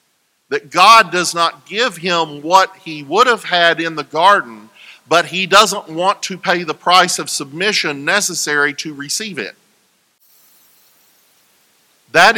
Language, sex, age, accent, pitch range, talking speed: English, male, 50-69, American, 135-185 Hz, 140 wpm